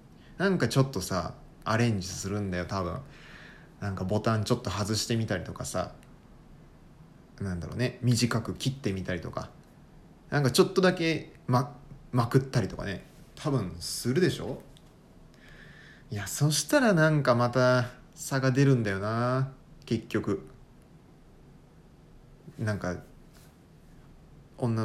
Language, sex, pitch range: Japanese, male, 105-145 Hz